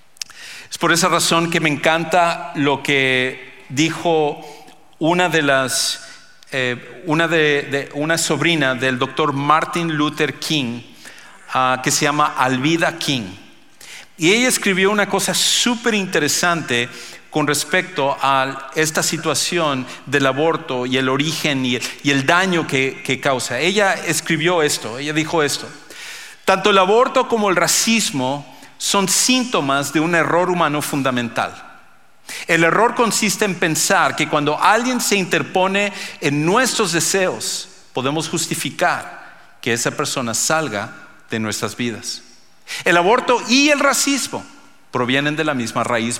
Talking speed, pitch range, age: 135 wpm, 140-190 Hz, 50-69